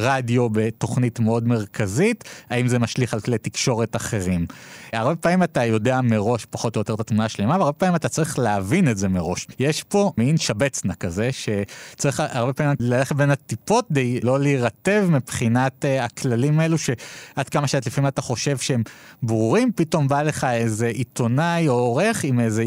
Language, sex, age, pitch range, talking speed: Hebrew, male, 30-49, 115-170 Hz, 170 wpm